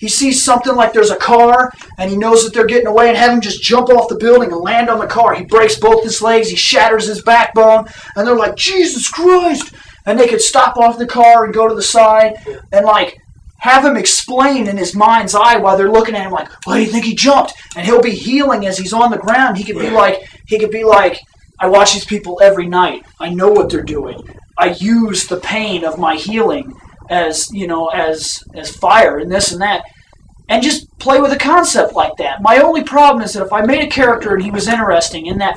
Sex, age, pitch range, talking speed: male, 30-49, 205-255 Hz, 240 wpm